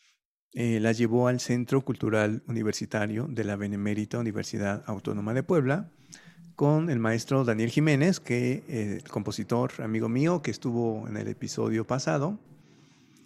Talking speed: 145 wpm